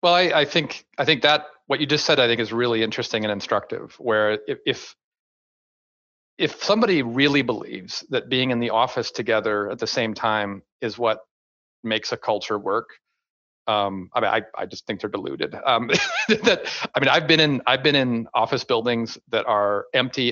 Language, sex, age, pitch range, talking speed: English, male, 40-59, 105-130 Hz, 185 wpm